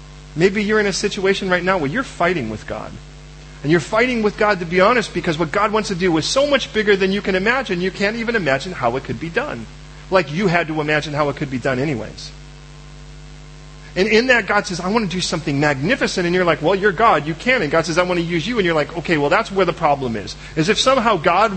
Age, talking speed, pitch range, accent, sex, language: 40-59, 265 wpm, 145-185 Hz, American, male, English